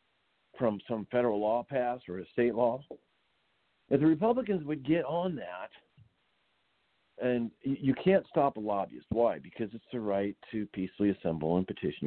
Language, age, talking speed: English, 50-69, 160 wpm